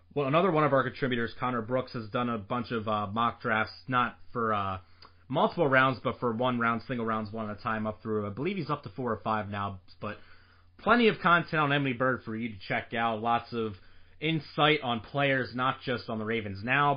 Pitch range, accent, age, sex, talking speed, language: 110-135 Hz, American, 20-39, male, 230 wpm, English